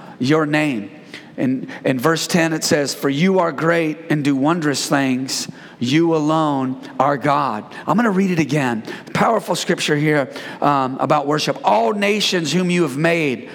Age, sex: 40-59, male